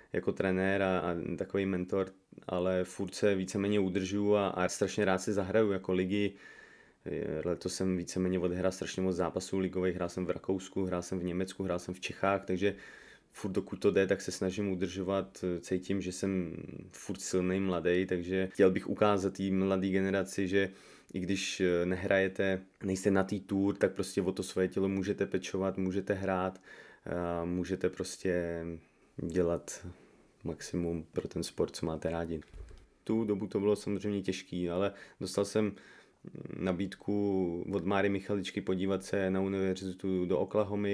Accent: native